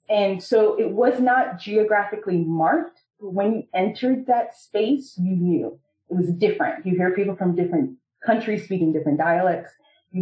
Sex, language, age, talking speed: female, English, 30-49, 160 wpm